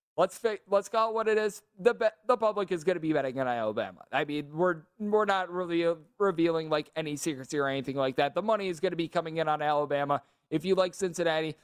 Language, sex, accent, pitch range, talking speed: English, male, American, 150-205 Hz, 230 wpm